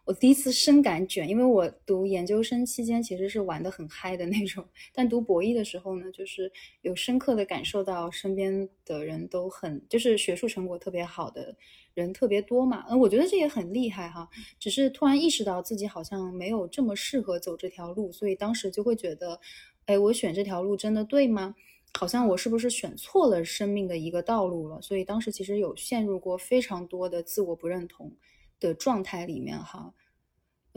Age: 20-39